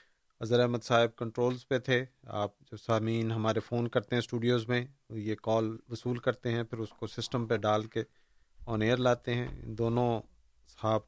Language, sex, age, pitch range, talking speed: Urdu, male, 40-59, 115-135 Hz, 180 wpm